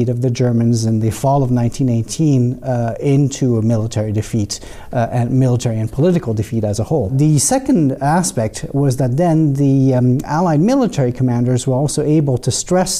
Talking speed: 175 wpm